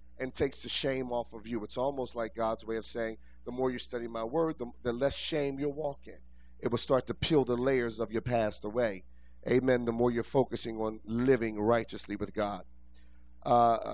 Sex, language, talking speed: male, English, 210 wpm